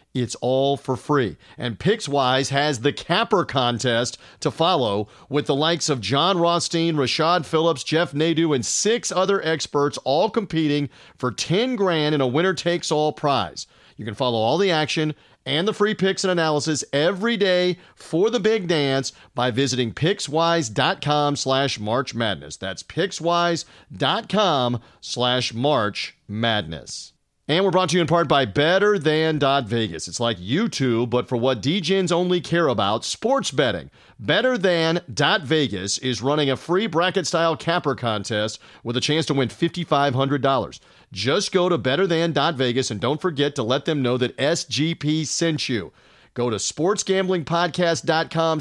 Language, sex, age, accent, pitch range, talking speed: English, male, 40-59, American, 125-170 Hz, 145 wpm